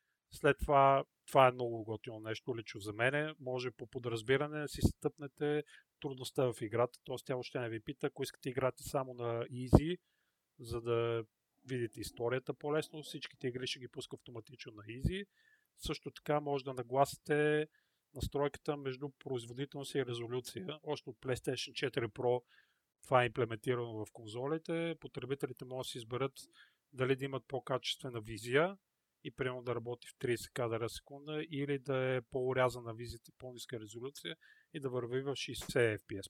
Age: 40-59